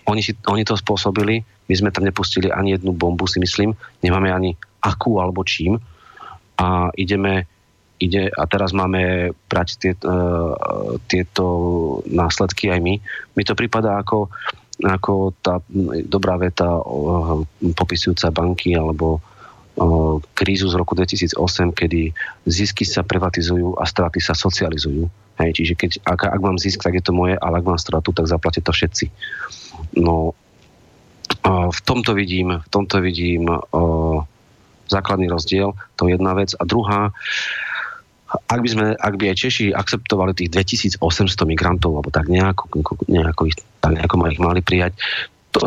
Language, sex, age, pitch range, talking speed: Slovak, male, 30-49, 85-100 Hz, 145 wpm